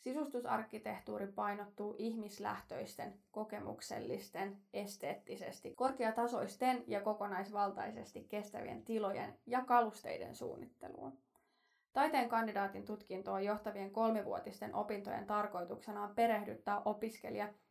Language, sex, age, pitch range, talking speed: Finnish, female, 20-39, 205-240 Hz, 80 wpm